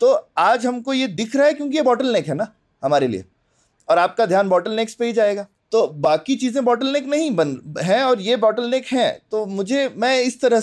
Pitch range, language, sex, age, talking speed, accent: 185-250 Hz, Hindi, male, 30-49, 230 wpm, native